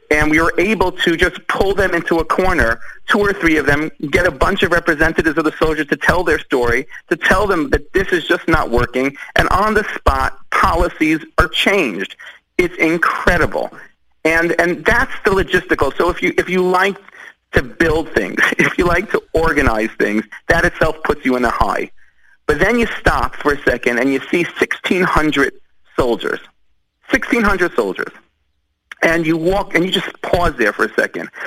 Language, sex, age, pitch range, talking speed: English, male, 40-59, 150-200 Hz, 185 wpm